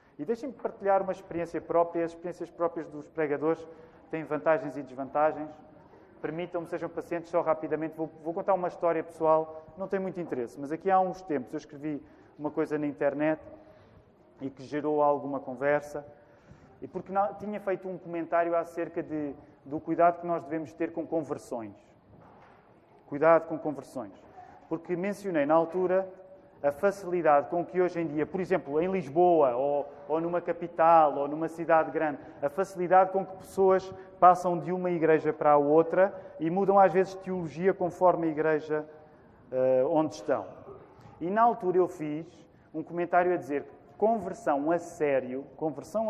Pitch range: 150-180 Hz